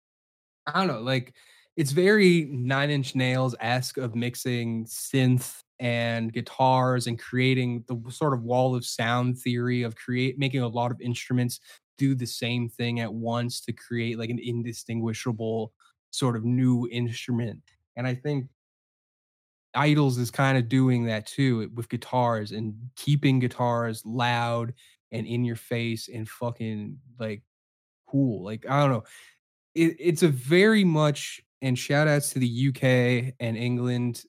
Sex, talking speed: male, 145 wpm